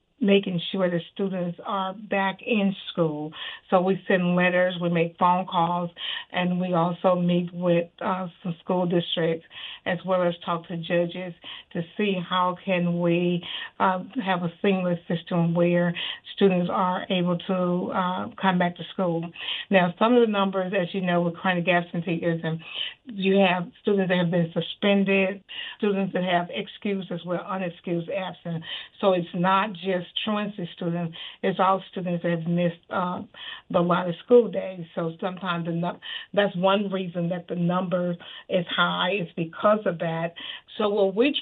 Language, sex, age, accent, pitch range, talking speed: English, female, 60-79, American, 175-195 Hz, 160 wpm